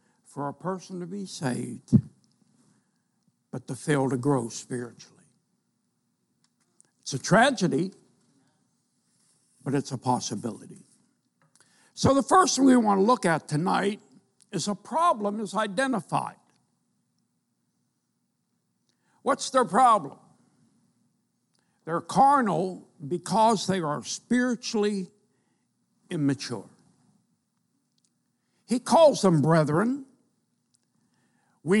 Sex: male